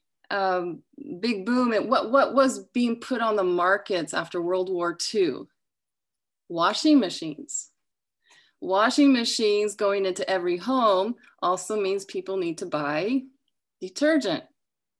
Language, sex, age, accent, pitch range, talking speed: English, female, 30-49, American, 185-275 Hz, 125 wpm